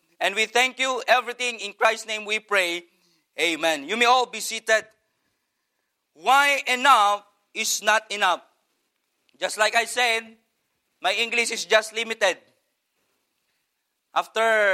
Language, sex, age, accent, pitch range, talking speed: English, male, 40-59, Filipino, 220-260 Hz, 125 wpm